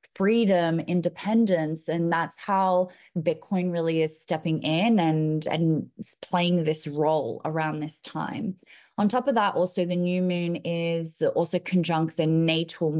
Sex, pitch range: female, 165-200 Hz